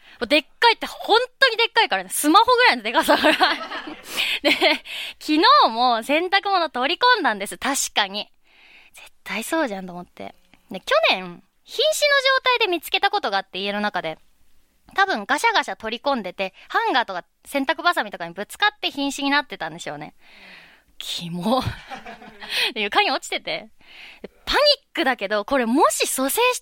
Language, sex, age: Japanese, female, 20-39